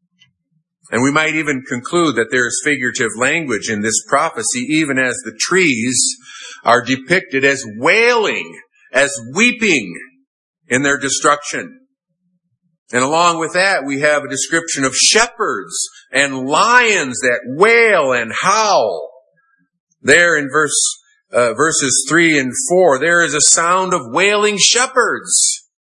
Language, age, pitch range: English, 50-69, 140-205 Hz